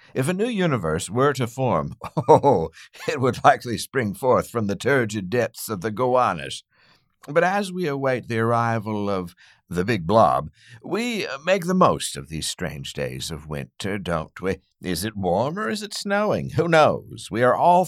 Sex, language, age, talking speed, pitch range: male, English, 60-79, 180 wpm, 105-160 Hz